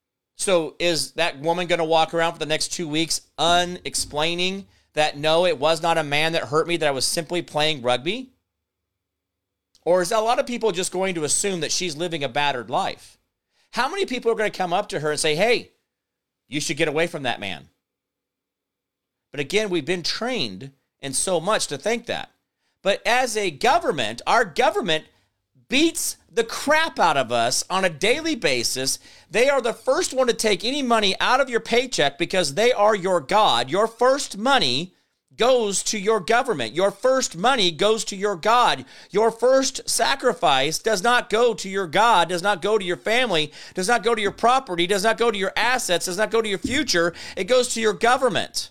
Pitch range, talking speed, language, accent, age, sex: 155-225 Hz, 200 wpm, English, American, 40-59, male